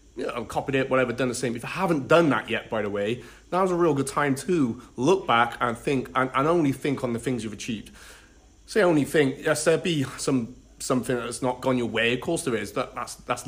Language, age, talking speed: English, 30-49, 255 wpm